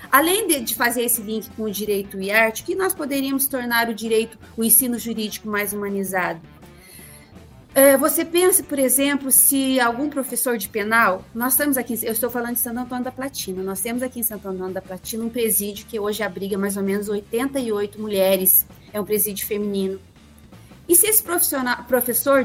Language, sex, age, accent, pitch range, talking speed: Portuguese, female, 30-49, Brazilian, 210-290 Hz, 180 wpm